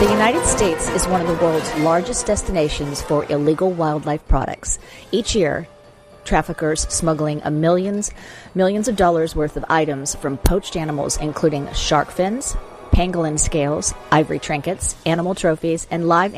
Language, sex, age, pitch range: English, female, 40-59, 150-185 Hz